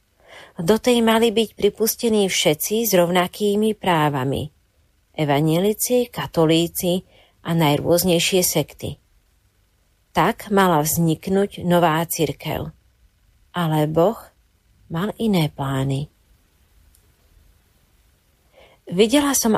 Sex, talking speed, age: female, 80 wpm, 40-59